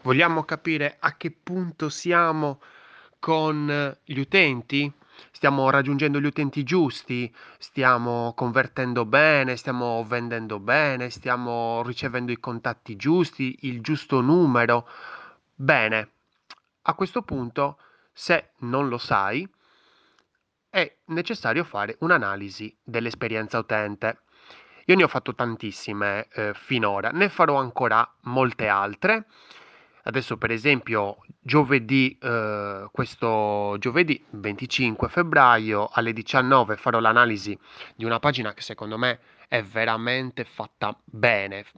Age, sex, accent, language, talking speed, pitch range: 20-39, male, native, Italian, 110 wpm, 110-145 Hz